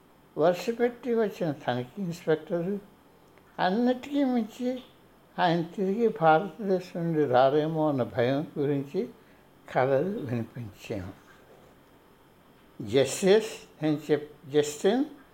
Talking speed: 80 wpm